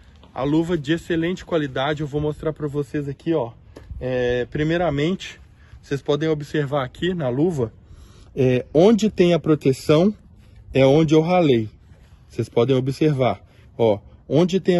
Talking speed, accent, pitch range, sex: 135 wpm, Brazilian, 110-150 Hz, male